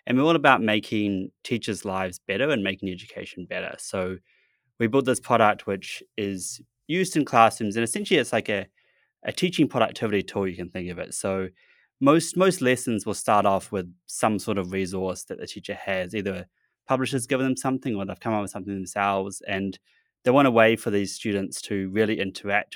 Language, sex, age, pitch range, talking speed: English, male, 20-39, 95-115 Hz, 200 wpm